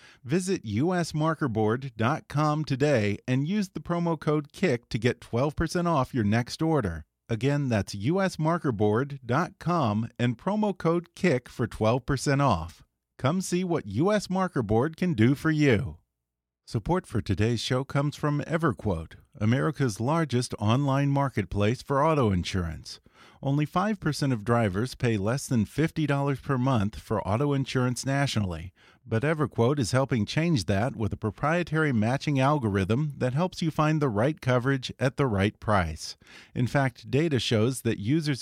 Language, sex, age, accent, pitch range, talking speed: English, male, 40-59, American, 110-150 Hz, 140 wpm